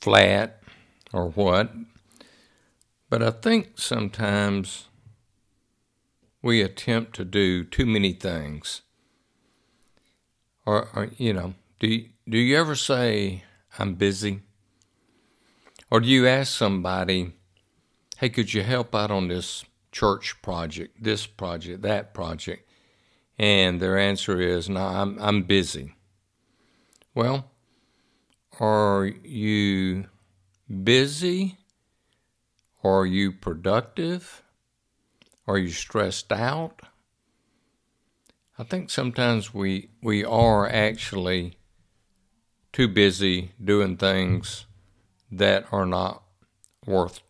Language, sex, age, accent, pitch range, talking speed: English, male, 60-79, American, 95-115 Hz, 100 wpm